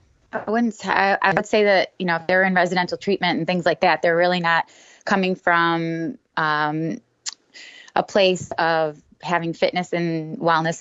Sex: female